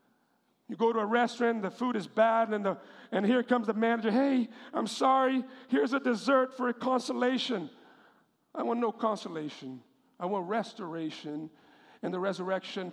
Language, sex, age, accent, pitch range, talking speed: English, male, 50-69, American, 175-245 Hz, 160 wpm